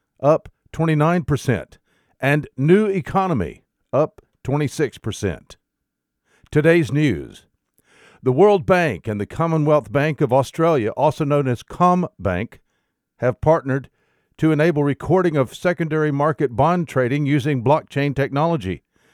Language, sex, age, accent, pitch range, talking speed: English, male, 60-79, American, 125-155 Hz, 115 wpm